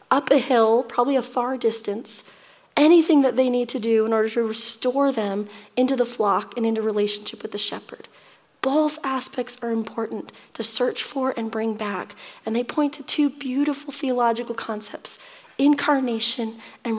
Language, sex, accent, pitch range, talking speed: English, female, American, 225-270 Hz, 165 wpm